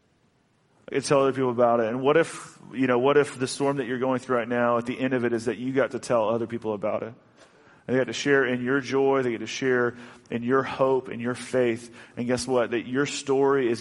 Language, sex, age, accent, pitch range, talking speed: English, male, 30-49, American, 120-135 Hz, 265 wpm